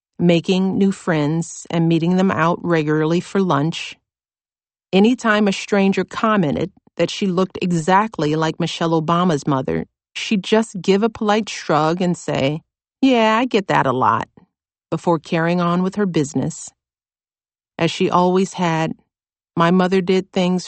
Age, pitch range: 40-59, 155-190 Hz